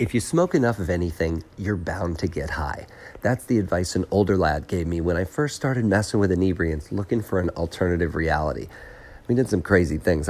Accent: American